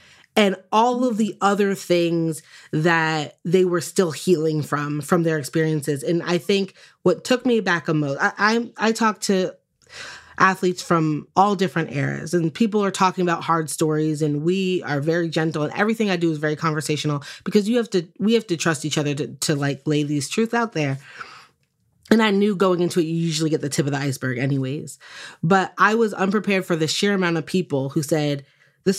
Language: English